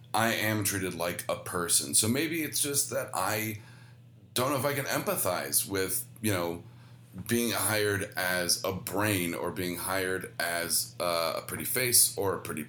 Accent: American